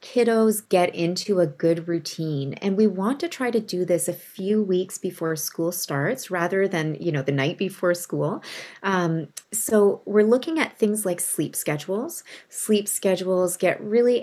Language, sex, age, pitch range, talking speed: English, female, 30-49, 160-200 Hz, 175 wpm